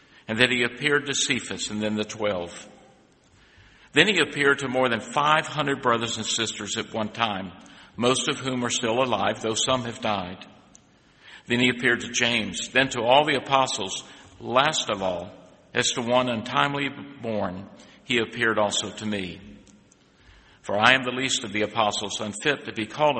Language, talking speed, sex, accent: English, 180 wpm, male, American